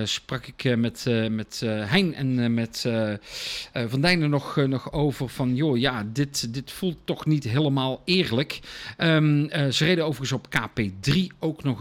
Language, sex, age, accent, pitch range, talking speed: Dutch, male, 50-69, Dutch, 125-165 Hz, 140 wpm